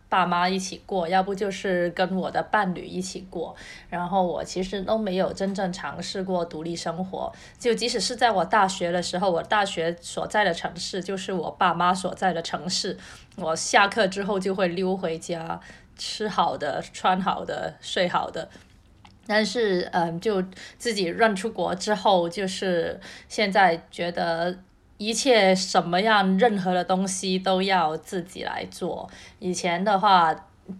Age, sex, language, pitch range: 20-39, female, Chinese, 175-200 Hz